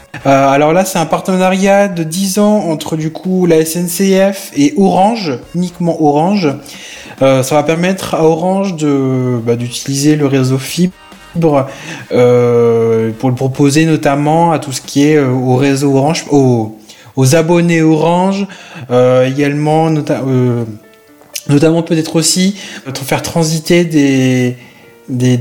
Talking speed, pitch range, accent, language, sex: 135 wpm, 135-170 Hz, French, French, male